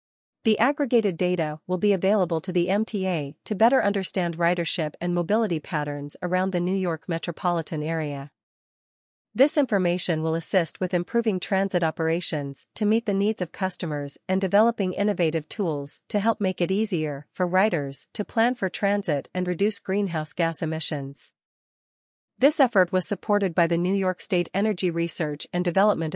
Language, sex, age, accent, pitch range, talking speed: English, female, 40-59, American, 160-200 Hz, 160 wpm